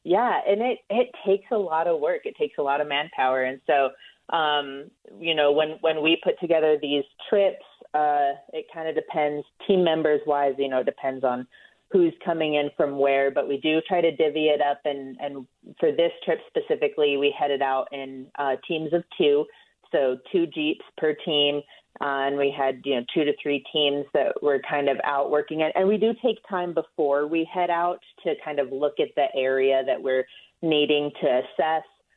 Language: English